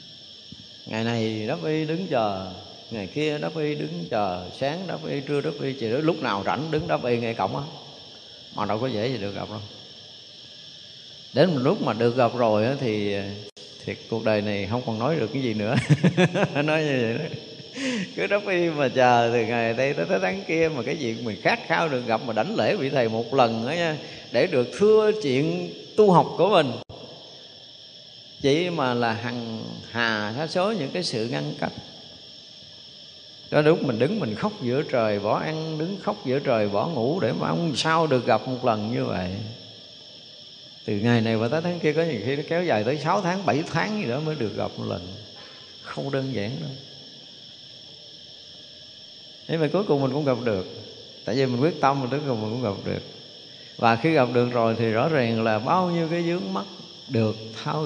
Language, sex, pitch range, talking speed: Vietnamese, male, 110-155 Hz, 205 wpm